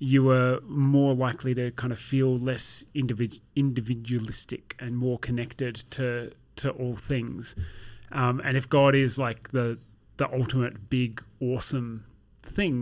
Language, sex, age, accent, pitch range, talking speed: English, male, 30-49, Australian, 120-135 Hz, 140 wpm